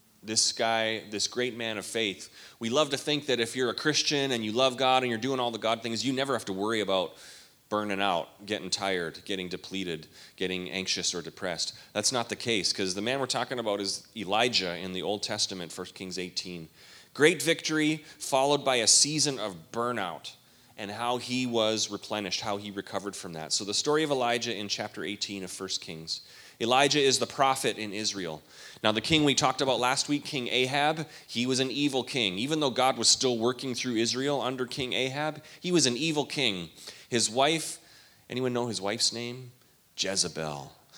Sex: male